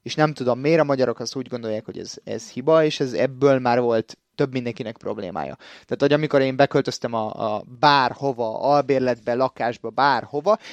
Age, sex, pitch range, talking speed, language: 30-49, male, 120-145 Hz, 180 wpm, Hungarian